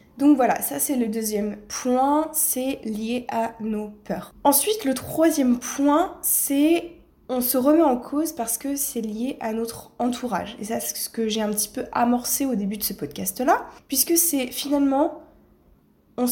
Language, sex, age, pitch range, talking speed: French, female, 20-39, 220-275 Hz, 175 wpm